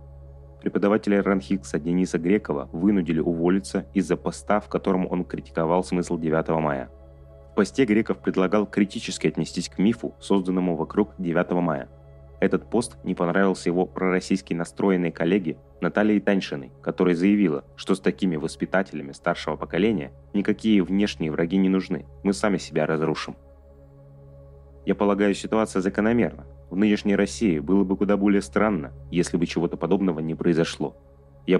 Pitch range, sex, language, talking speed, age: 70-95 Hz, male, Russian, 140 wpm, 20-39